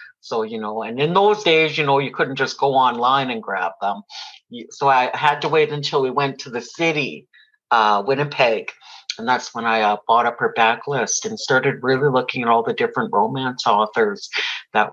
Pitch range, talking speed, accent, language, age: 115-145 Hz, 200 wpm, American, English, 50-69